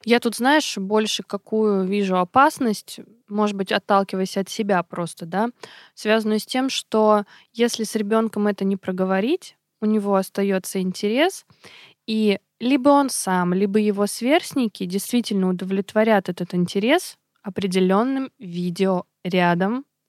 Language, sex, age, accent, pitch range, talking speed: Russian, female, 20-39, native, 190-230 Hz, 120 wpm